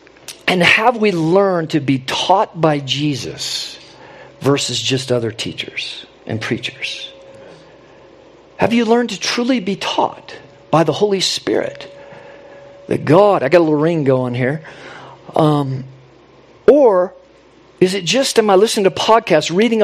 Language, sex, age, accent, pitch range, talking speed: English, male, 50-69, American, 145-210 Hz, 140 wpm